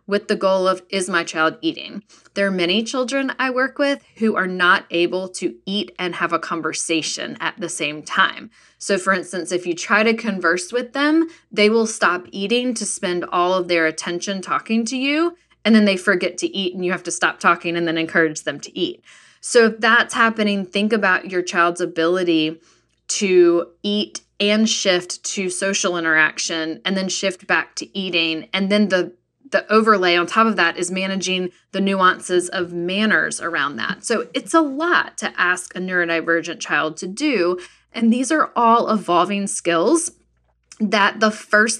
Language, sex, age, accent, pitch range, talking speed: English, female, 10-29, American, 175-220 Hz, 185 wpm